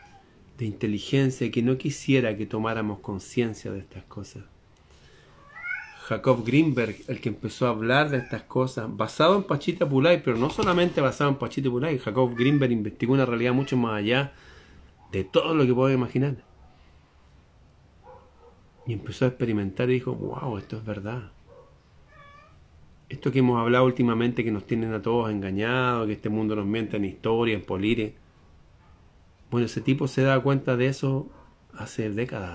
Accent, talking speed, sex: Argentinian, 160 wpm, male